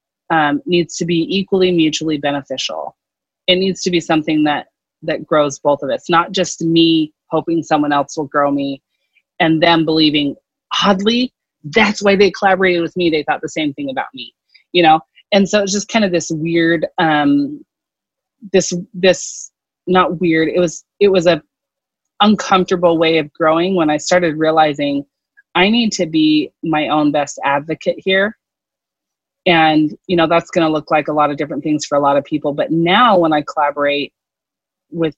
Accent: American